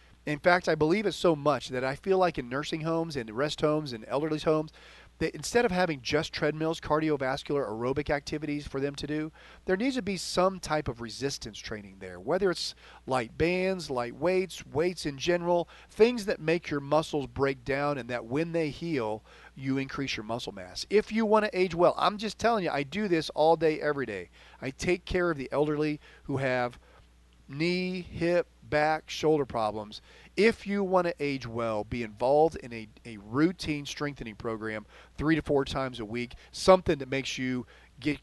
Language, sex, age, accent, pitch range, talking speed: English, male, 40-59, American, 130-170 Hz, 195 wpm